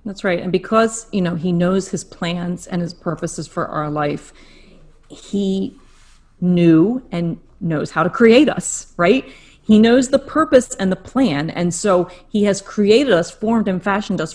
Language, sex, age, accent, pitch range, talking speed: English, female, 30-49, American, 175-220 Hz, 175 wpm